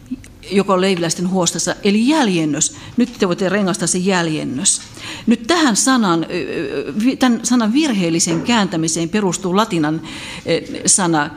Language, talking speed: Finnish, 110 wpm